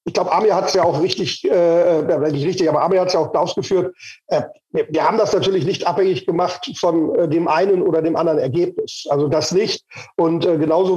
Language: German